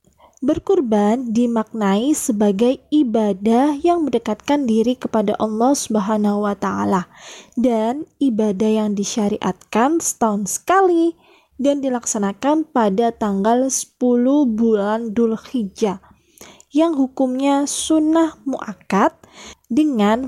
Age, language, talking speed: 20-39, Indonesian, 85 wpm